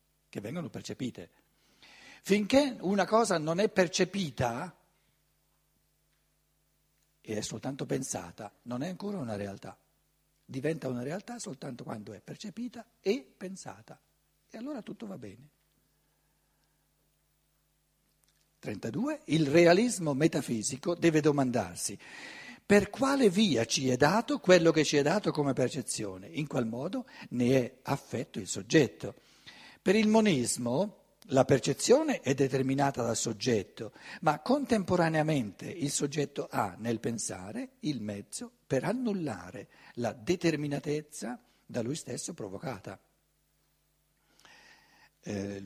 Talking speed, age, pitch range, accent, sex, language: 115 wpm, 60-79, 120-185 Hz, native, male, Italian